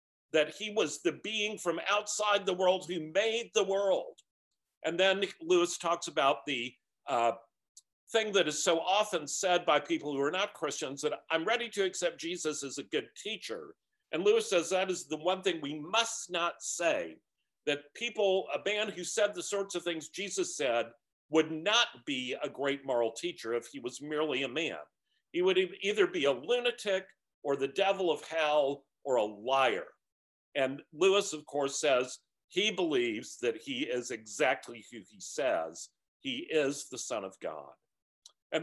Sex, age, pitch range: male, 50-69, 150-215 Hz